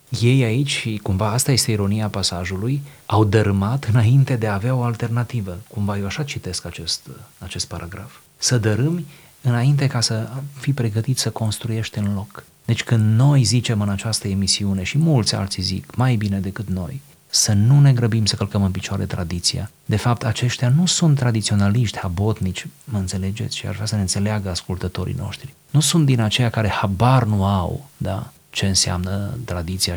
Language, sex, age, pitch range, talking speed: Romanian, male, 30-49, 100-125 Hz, 170 wpm